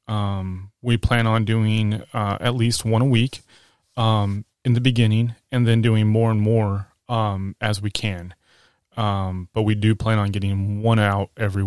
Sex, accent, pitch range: male, American, 100-120 Hz